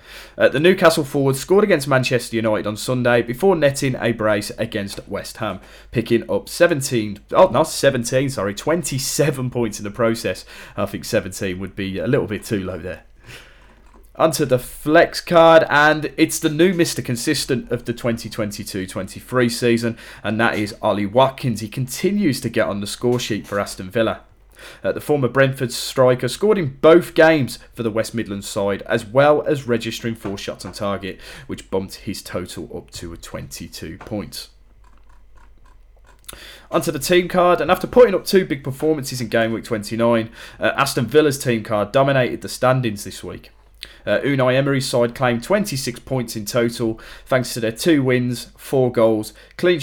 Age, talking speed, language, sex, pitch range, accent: 30-49, 175 wpm, English, male, 105-135 Hz, British